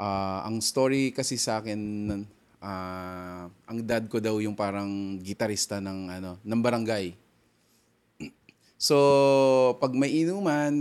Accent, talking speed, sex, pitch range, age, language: native, 120 wpm, male, 100-135 Hz, 20-39, Filipino